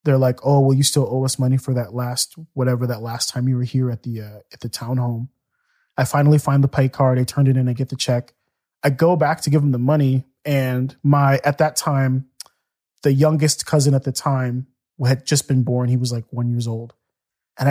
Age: 30-49